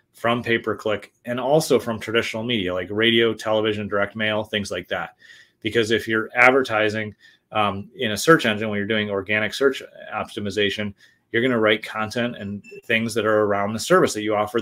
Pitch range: 105-115 Hz